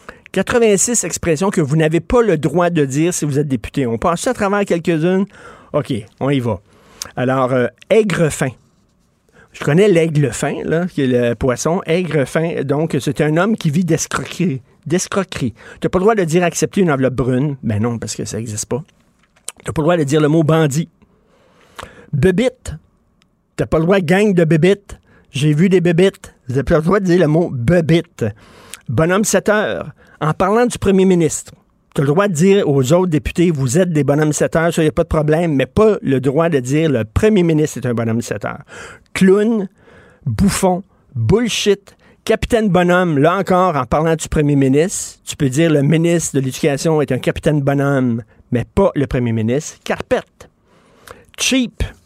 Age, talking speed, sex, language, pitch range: 50-69, 195 wpm, male, French, 140-185 Hz